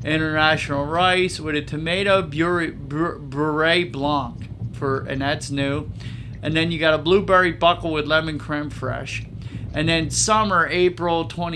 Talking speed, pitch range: 145 wpm, 125-165 Hz